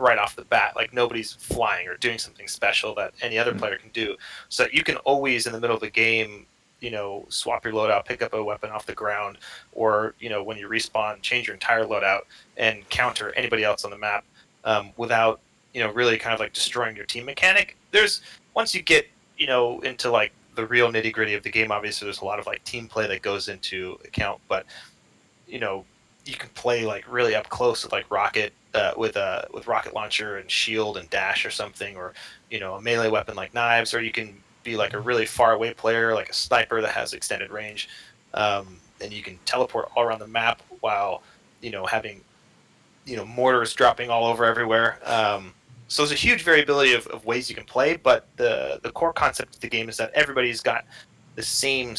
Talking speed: 220 wpm